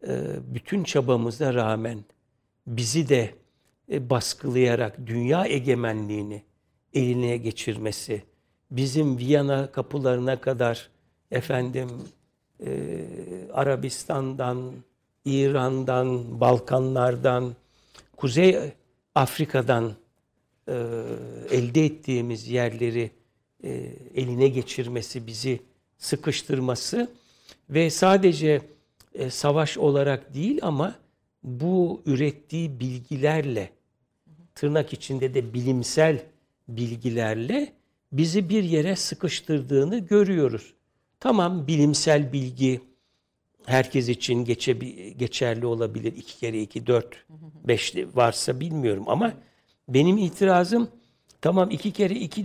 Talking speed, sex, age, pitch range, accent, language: 80 wpm, male, 60-79, 120-155 Hz, native, Turkish